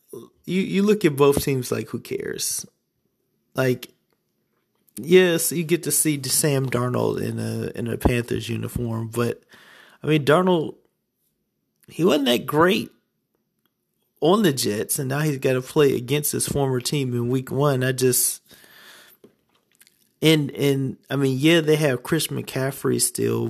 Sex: male